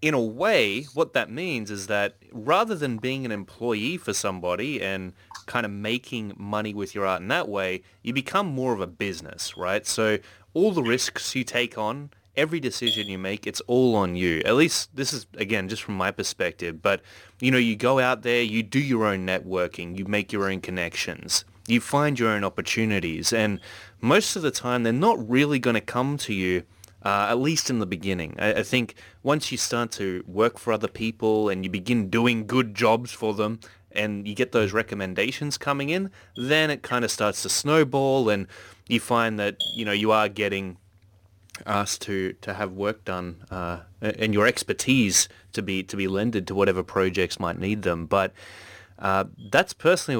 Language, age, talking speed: English, 20-39, 195 wpm